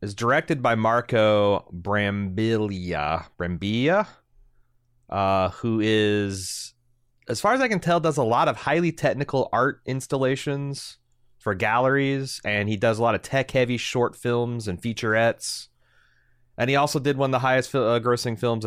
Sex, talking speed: male, 150 wpm